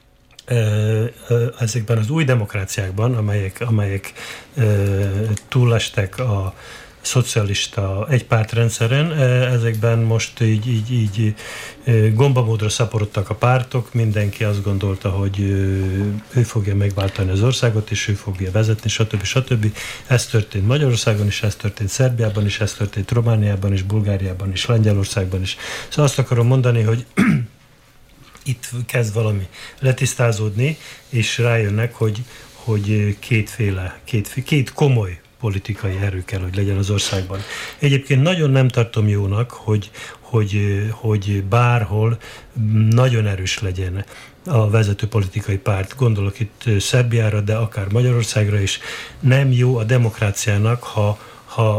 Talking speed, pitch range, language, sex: 120 wpm, 100-120 Hz, Hungarian, male